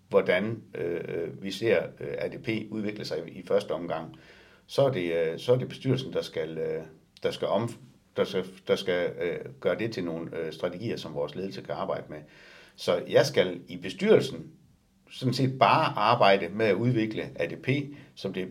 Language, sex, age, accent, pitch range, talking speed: Danish, male, 60-79, native, 105-165 Hz, 190 wpm